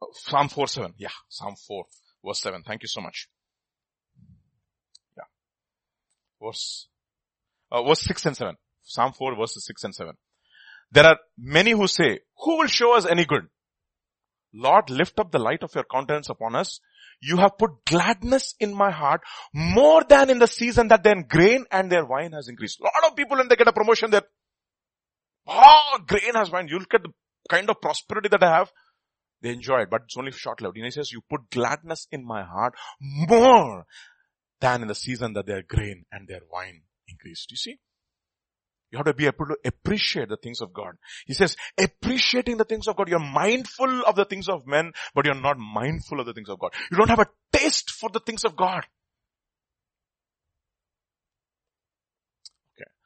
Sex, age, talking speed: male, 30-49, 185 wpm